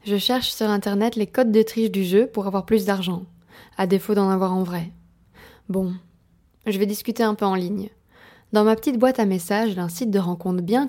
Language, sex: French, female